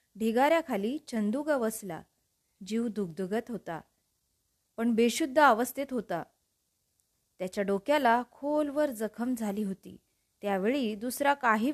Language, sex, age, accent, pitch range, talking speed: Marathi, female, 20-39, native, 205-255 Hz, 90 wpm